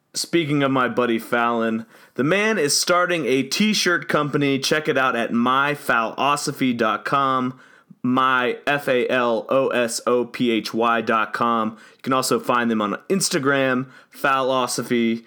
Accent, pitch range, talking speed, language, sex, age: American, 120-155 Hz, 105 wpm, English, male, 30-49